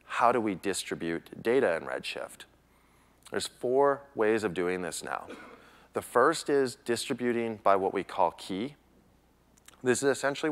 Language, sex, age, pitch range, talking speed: English, male, 30-49, 100-135 Hz, 150 wpm